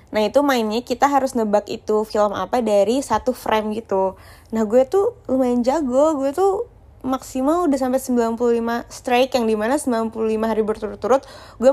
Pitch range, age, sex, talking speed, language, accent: 200-250 Hz, 20-39, female, 160 wpm, Indonesian, native